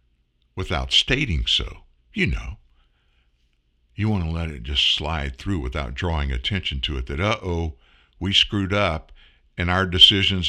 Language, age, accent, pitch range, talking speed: English, 60-79, American, 75-110 Hz, 155 wpm